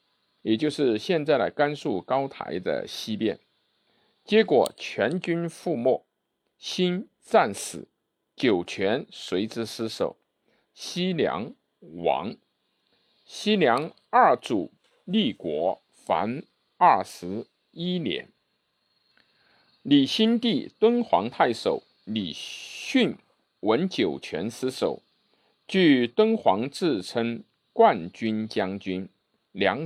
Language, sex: Chinese, male